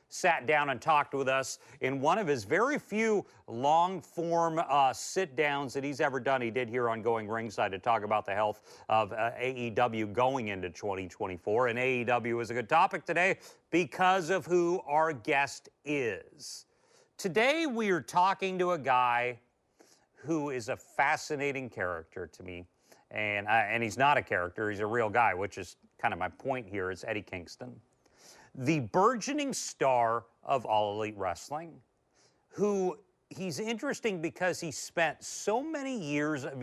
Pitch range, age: 120-170 Hz, 40-59